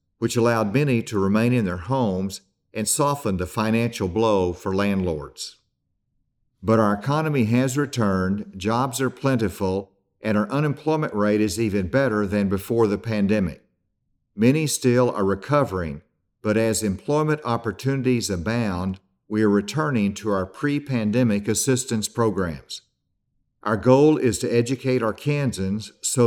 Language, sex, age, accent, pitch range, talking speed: English, male, 50-69, American, 100-130 Hz, 135 wpm